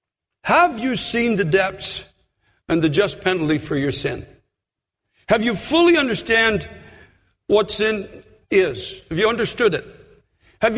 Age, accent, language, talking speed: 60-79, American, English, 135 wpm